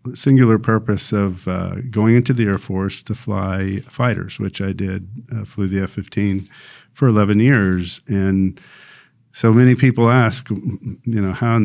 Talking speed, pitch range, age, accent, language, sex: 160 wpm, 100-120 Hz, 50-69, American, English, male